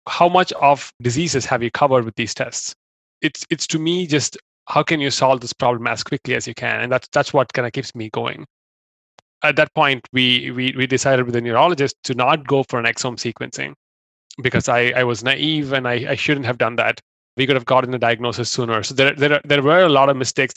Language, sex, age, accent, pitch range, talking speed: English, male, 30-49, Indian, 120-140 Hz, 235 wpm